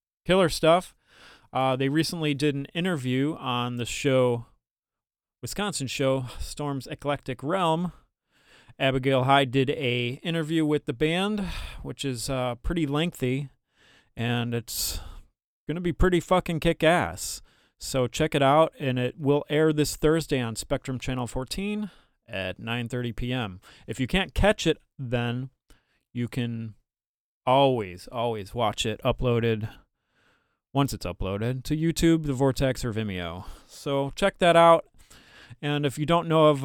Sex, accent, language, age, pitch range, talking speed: male, American, English, 30-49, 120-150 Hz, 140 wpm